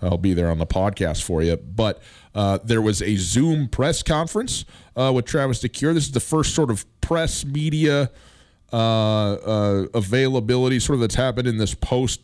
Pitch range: 105-140 Hz